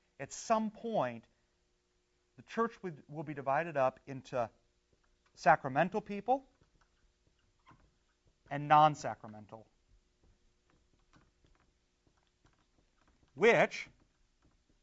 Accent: American